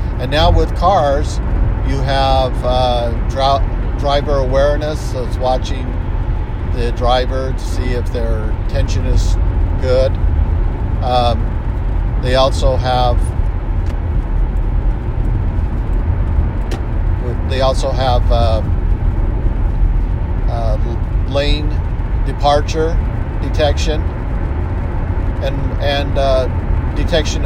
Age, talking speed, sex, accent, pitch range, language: 50-69, 80 wpm, male, American, 85-115 Hz, English